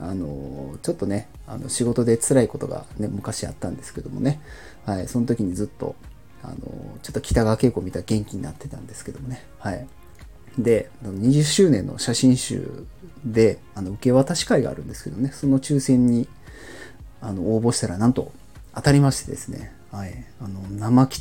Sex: male